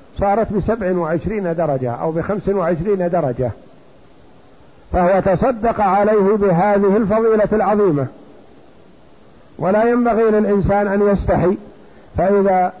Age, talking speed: 50-69, 95 wpm